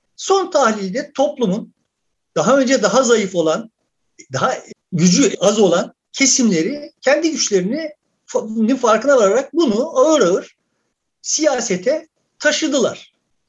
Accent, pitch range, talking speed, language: native, 200-295 Hz, 100 wpm, Turkish